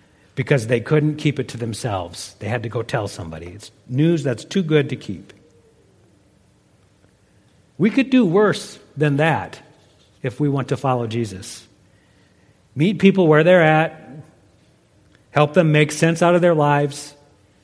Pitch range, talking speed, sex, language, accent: 105-150 Hz, 155 wpm, male, English, American